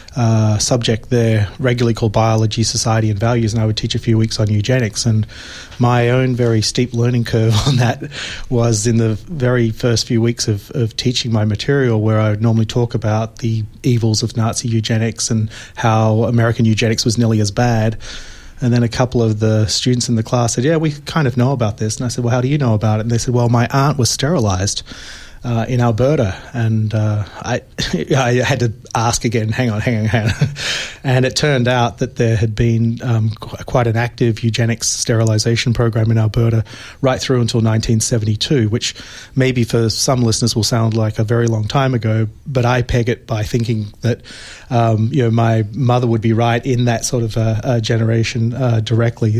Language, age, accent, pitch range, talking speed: English, 30-49, Australian, 110-120 Hz, 205 wpm